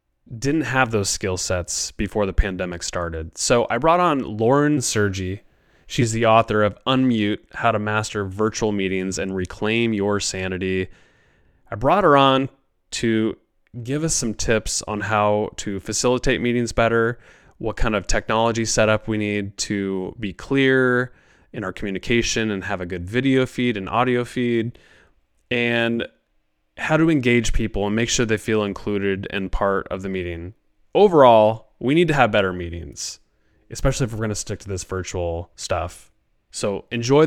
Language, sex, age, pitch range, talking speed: English, male, 20-39, 95-120 Hz, 165 wpm